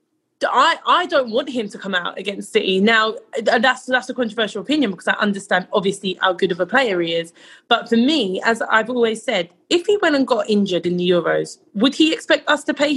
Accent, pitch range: British, 200-290 Hz